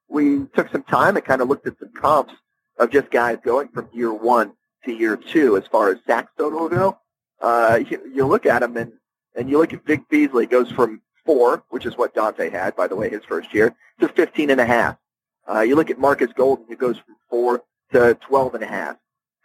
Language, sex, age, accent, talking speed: English, male, 40-59, American, 210 wpm